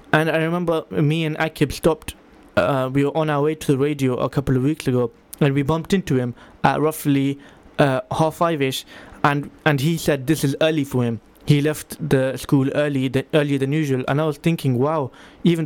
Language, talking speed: English, 210 wpm